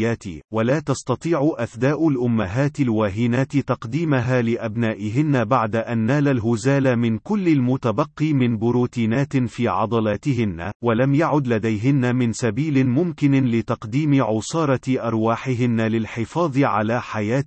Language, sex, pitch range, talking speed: Arabic, male, 115-140 Hz, 105 wpm